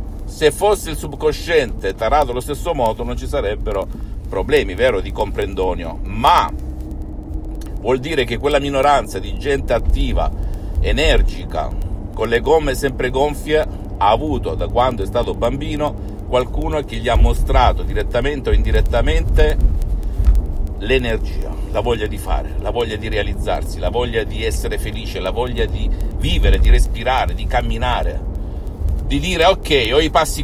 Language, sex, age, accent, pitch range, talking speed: Italian, male, 50-69, native, 75-115 Hz, 145 wpm